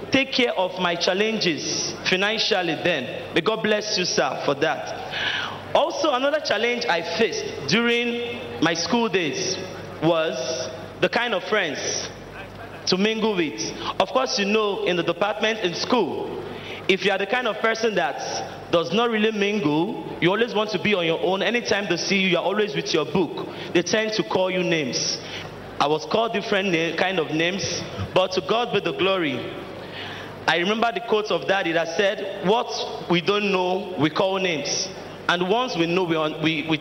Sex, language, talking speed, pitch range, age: male, English, 180 wpm, 170-220 Hz, 40-59